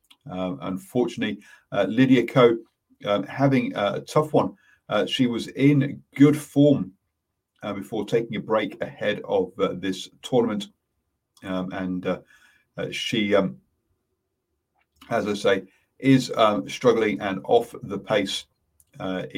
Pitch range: 95-130 Hz